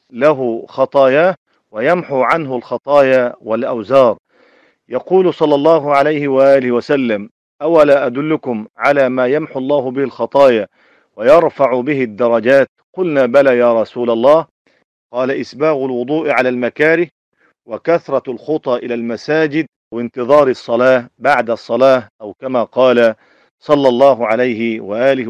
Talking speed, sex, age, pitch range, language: 110 wpm, male, 40-59, 125-155 Hz, Arabic